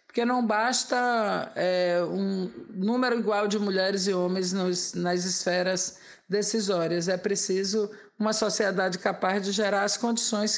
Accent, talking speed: Brazilian, 125 wpm